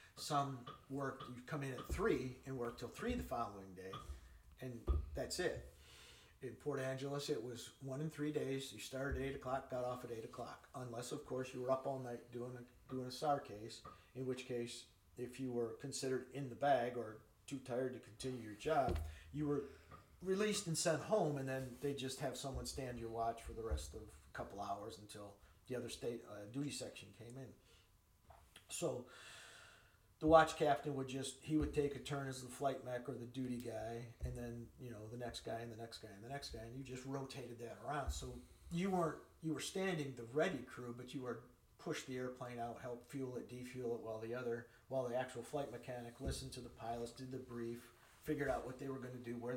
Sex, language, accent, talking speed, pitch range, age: male, English, American, 220 wpm, 115-135 Hz, 50-69